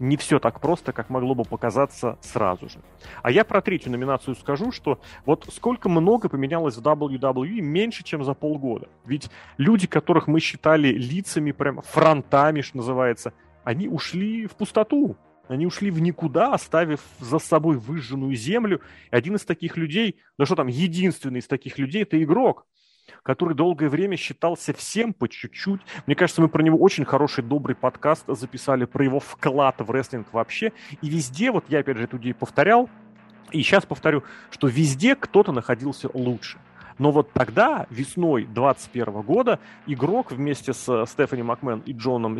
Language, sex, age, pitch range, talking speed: Russian, male, 30-49, 125-160 Hz, 165 wpm